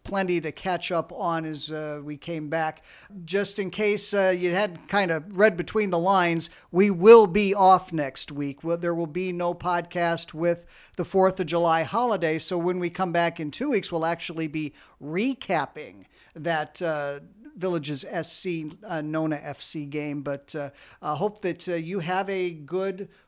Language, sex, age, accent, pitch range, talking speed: English, male, 50-69, American, 160-195 Hz, 180 wpm